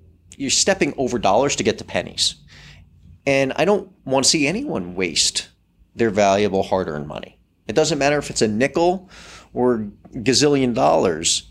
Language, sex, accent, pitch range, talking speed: English, male, American, 95-135 Hz, 155 wpm